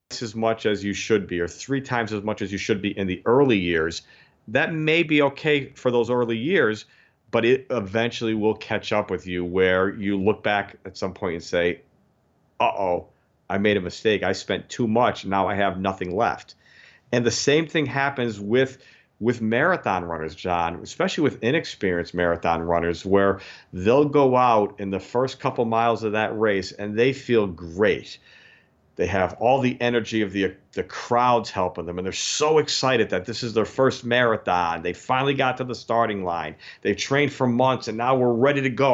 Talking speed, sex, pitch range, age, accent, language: 195 wpm, male, 100-130 Hz, 40-59, American, English